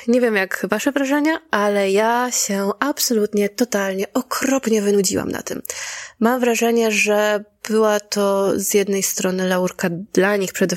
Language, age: Polish, 20-39